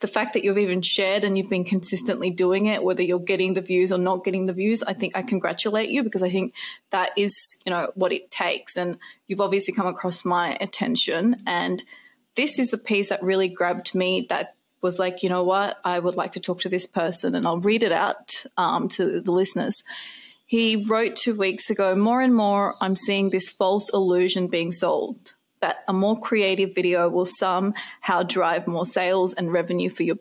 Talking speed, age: 210 wpm, 20-39